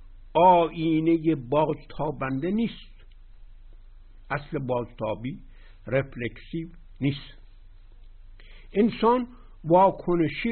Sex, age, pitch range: male, 60-79, 95-155 Hz